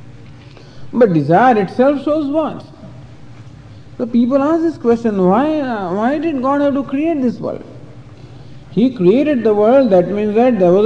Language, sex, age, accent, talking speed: English, male, 50-69, Indian, 160 wpm